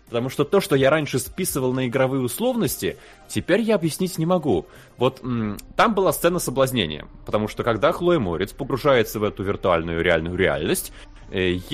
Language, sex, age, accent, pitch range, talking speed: Russian, male, 20-39, native, 110-145 Hz, 160 wpm